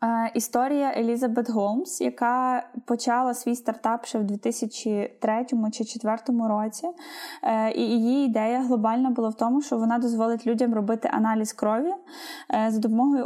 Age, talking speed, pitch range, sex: 10-29, 145 wpm, 215-260 Hz, female